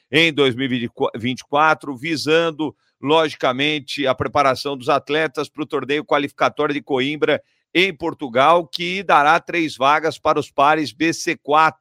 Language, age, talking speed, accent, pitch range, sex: Portuguese, 50-69, 120 wpm, Brazilian, 140-165 Hz, male